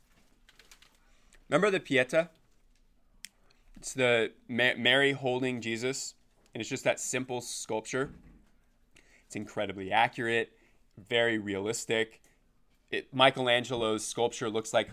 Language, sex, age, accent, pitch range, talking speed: English, male, 20-39, American, 110-135 Hz, 100 wpm